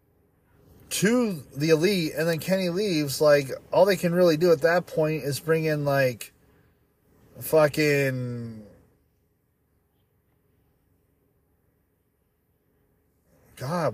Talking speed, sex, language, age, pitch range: 95 wpm, male, English, 30-49, 125-160 Hz